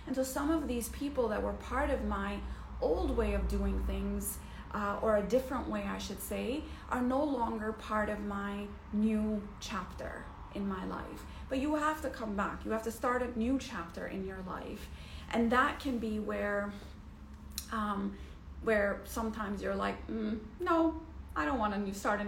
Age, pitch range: 30-49, 185-240 Hz